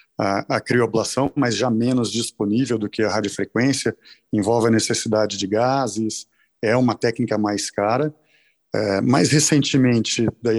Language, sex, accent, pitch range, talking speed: Portuguese, male, Brazilian, 115-135 Hz, 140 wpm